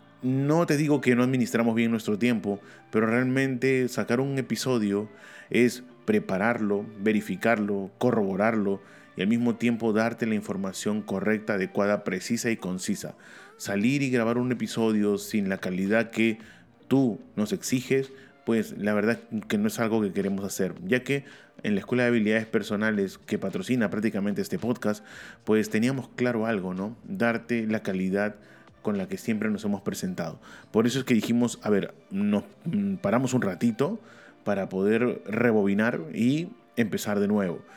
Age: 30-49